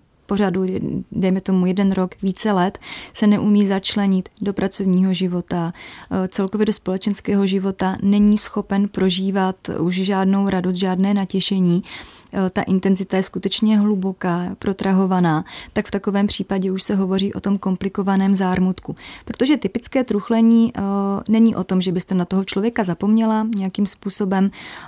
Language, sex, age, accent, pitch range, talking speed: Czech, female, 20-39, native, 190-205 Hz, 135 wpm